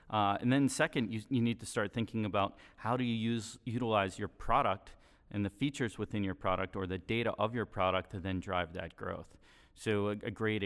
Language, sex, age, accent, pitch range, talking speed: English, male, 30-49, American, 95-115 Hz, 220 wpm